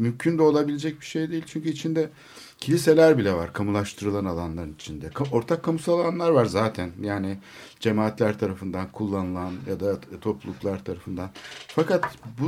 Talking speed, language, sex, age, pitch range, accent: 140 wpm, Turkish, male, 60-79, 100-135 Hz, native